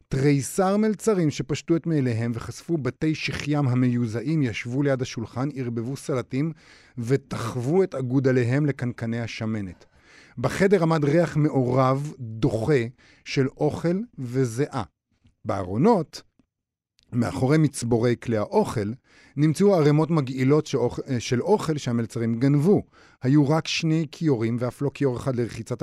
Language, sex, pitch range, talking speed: Hebrew, male, 120-155 Hz, 115 wpm